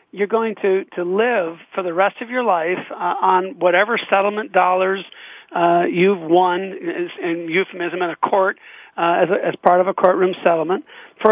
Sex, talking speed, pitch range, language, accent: male, 185 wpm, 180-225 Hz, English, American